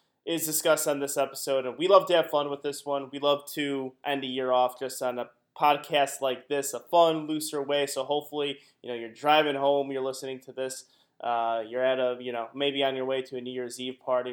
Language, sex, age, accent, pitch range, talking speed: English, male, 20-39, American, 130-160 Hz, 245 wpm